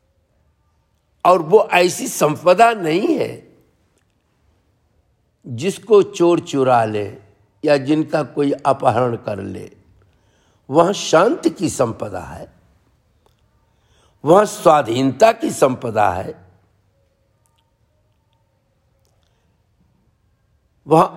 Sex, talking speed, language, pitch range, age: male, 75 wpm, Hindi, 100-165 Hz, 60-79